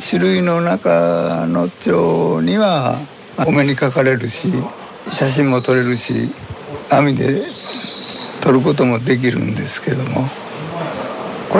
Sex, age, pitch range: male, 60-79, 125-175 Hz